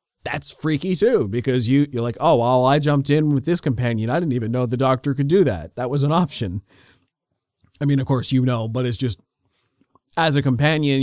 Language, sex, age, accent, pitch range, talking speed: English, male, 30-49, American, 120-145 Hz, 220 wpm